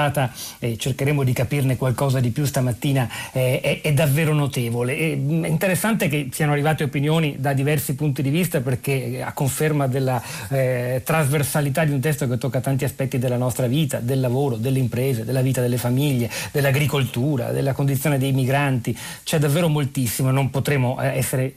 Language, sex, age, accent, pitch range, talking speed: Italian, male, 40-59, native, 125-155 Hz, 165 wpm